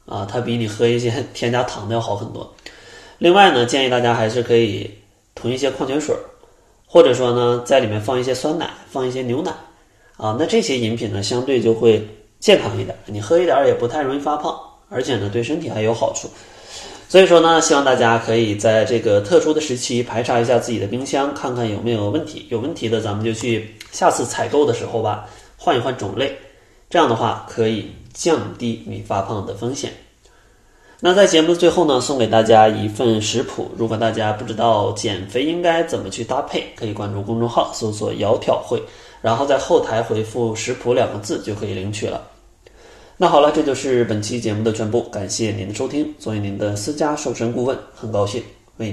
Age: 20-39